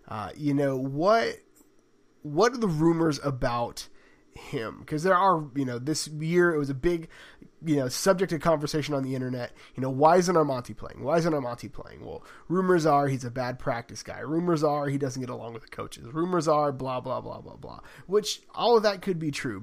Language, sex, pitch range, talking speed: English, male, 135-170 Hz, 215 wpm